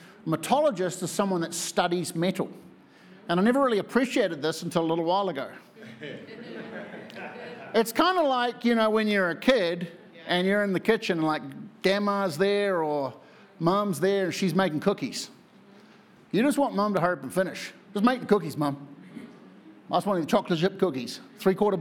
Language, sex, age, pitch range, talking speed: English, male, 50-69, 155-210 Hz, 180 wpm